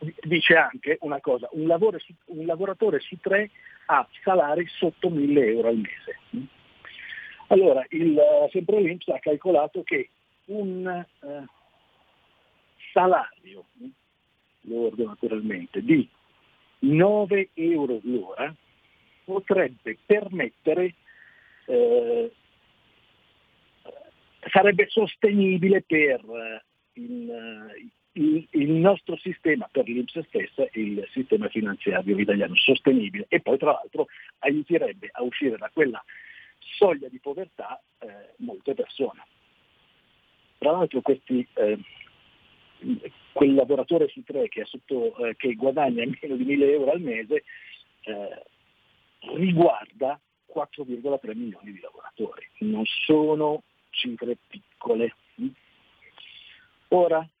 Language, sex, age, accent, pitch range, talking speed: Italian, male, 50-69, native, 140-230 Hz, 105 wpm